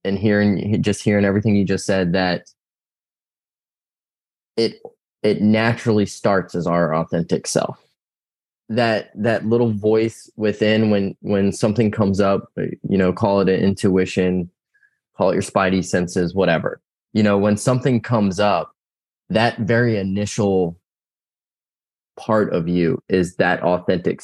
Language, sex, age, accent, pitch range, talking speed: English, male, 20-39, American, 95-110 Hz, 135 wpm